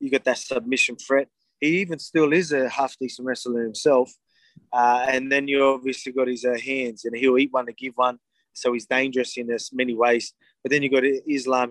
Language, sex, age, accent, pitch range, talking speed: English, male, 20-39, Australian, 125-140 Hz, 215 wpm